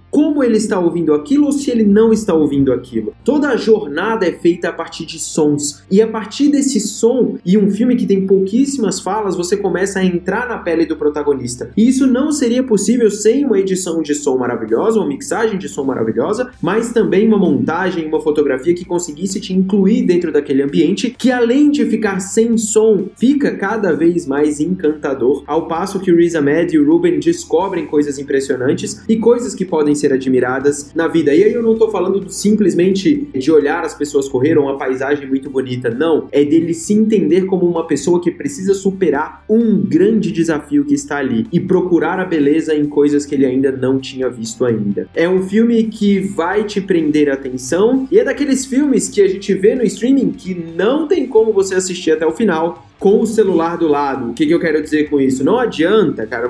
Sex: male